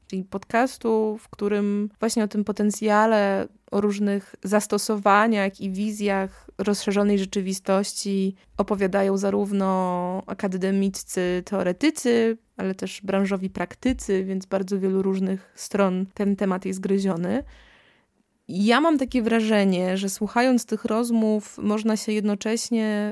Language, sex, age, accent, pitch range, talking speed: Polish, female, 20-39, native, 190-215 Hz, 110 wpm